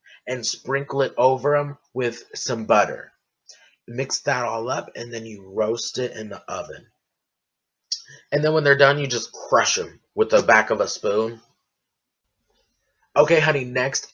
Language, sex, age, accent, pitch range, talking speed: English, male, 20-39, American, 110-145 Hz, 160 wpm